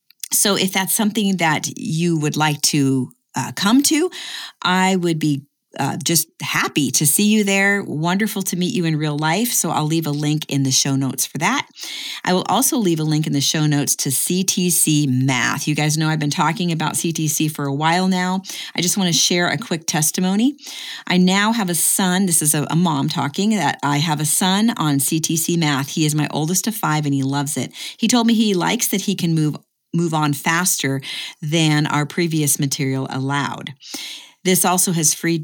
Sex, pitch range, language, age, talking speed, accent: female, 150-190 Hz, English, 40-59, 210 wpm, American